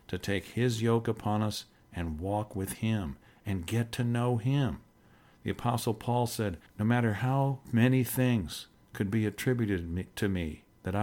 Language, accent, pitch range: English, American, 95-115 Hz